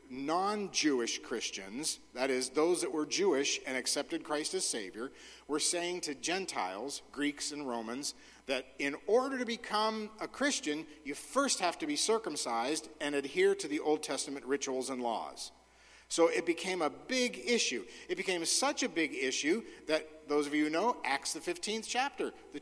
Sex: male